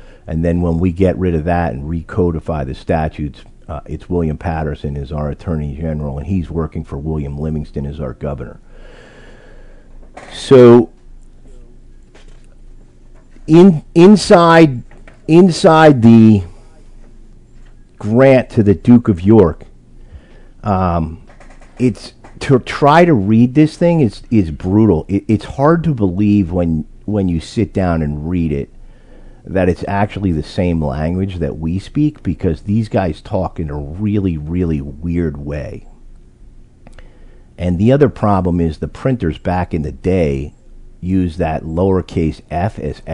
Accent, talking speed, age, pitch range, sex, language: American, 140 wpm, 50-69, 75-110 Hz, male, English